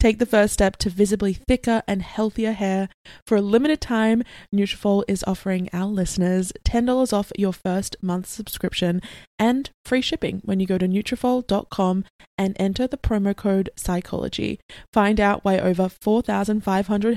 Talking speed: 155 wpm